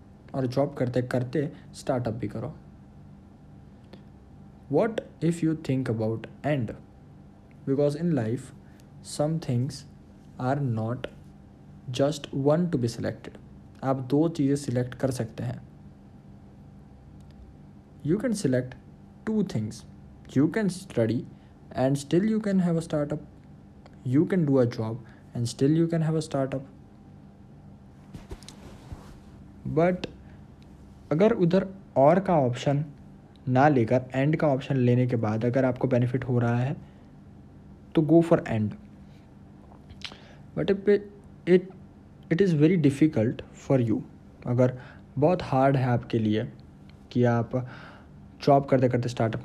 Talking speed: 125 wpm